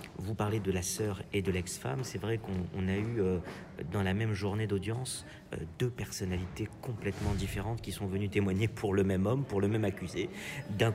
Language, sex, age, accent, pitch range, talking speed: French, male, 50-69, French, 85-105 Hz, 210 wpm